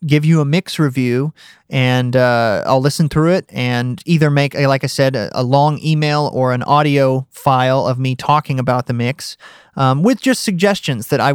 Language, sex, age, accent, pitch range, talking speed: English, male, 30-49, American, 130-155 Hz, 195 wpm